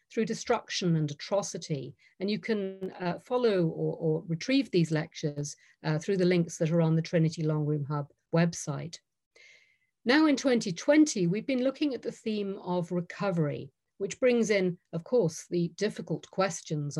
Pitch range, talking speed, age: 160-205 Hz, 160 wpm, 50-69